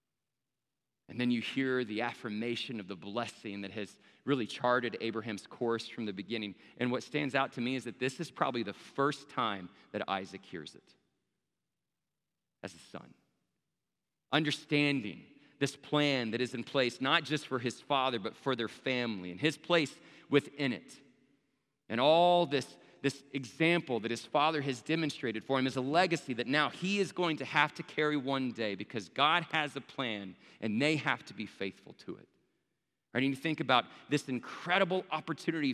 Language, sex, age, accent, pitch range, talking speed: English, male, 40-59, American, 115-155 Hz, 180 wpm